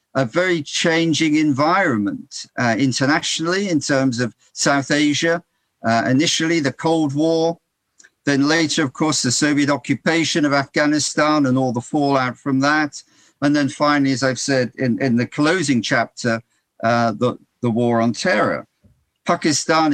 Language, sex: English, male